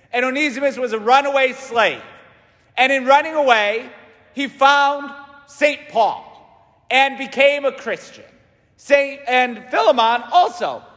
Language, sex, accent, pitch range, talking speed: English, male, American, 215-280 Hz, 120 wpm